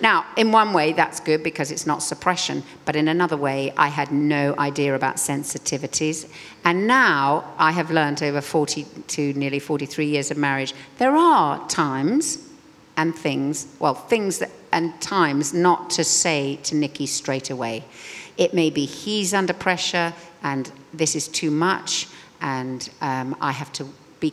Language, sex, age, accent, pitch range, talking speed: English, female, 50-69, British, 145-185 Hz, 160 wpm